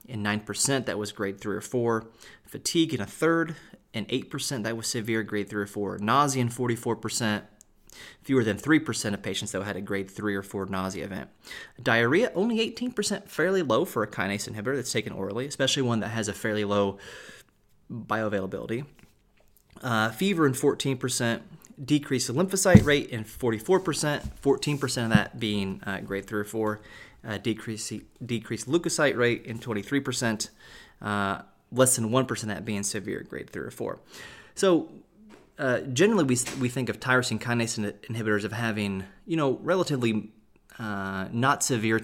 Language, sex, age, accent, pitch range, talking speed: English, male, 30-49, American, 105-135 Hz, 165 wpm